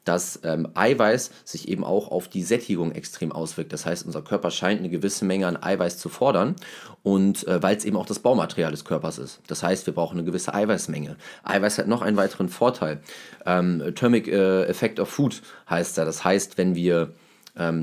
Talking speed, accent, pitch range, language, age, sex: 195 wpm, German, 90-115 Hz, German, 30-49, male